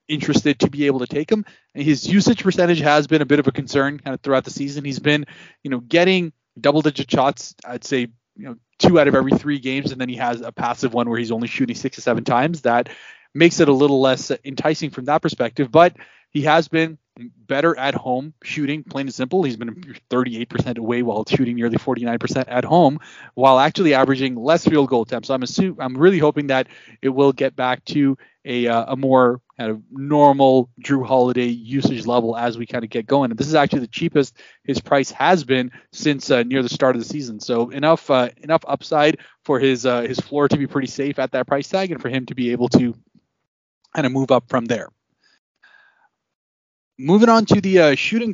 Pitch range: 125-150 Hz